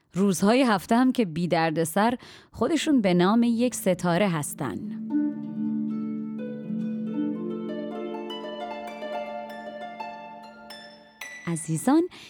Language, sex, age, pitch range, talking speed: Persian, female, 30-49, 160-245 Hz, 65 wpm